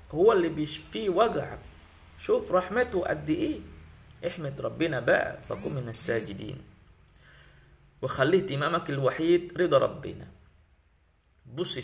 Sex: male